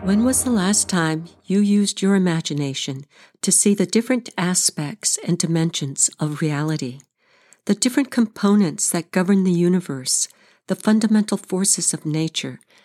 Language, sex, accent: English, female, American